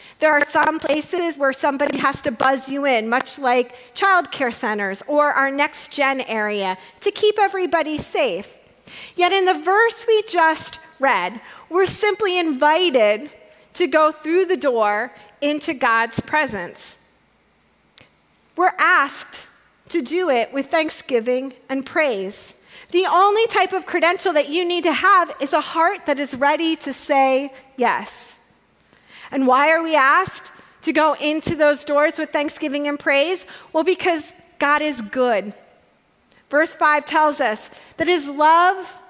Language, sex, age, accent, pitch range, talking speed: English, female, 40-59, American, 260-340 Hz, 145 wpm